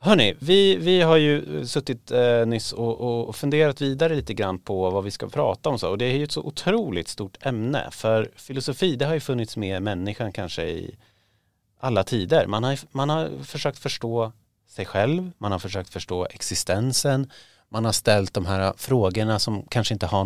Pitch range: 100-135 Hz